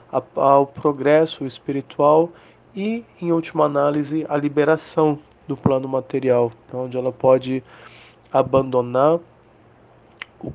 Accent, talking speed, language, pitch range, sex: Brazilian, 95 wpm, English, 125-155 Hz, male